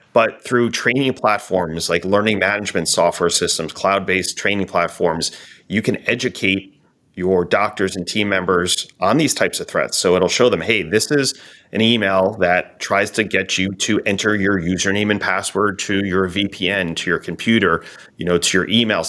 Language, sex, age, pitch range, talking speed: English, male, 30-49, 95-110 Hz, 175 wpm